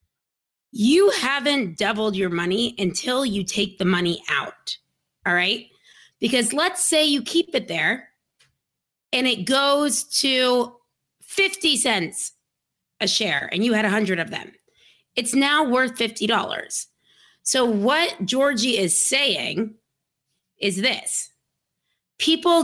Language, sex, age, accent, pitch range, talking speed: English, female, 30-49, American, 205-275 Hz, 120 wpm